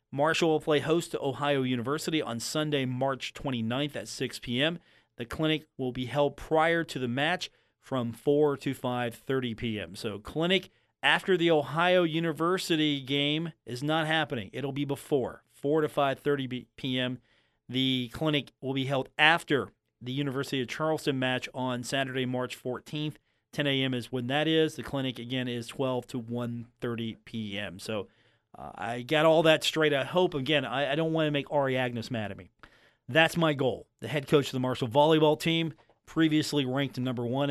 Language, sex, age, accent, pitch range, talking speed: English, male, 40-59, American, 120-150 Hz, 180 wpm